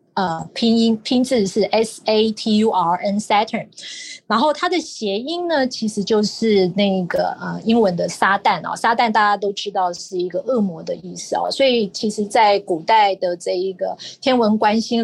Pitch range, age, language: 185-245 Hz, 30-49, Chinese